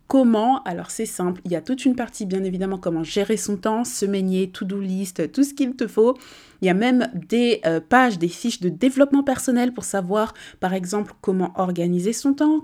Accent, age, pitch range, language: French, 20-39, 190-255 Hz, French